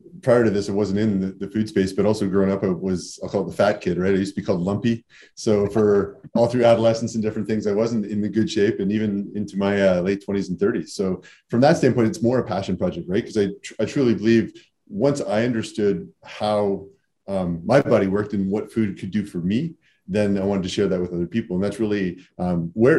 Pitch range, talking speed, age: 100-110 Hz, 245 wpm, 30-49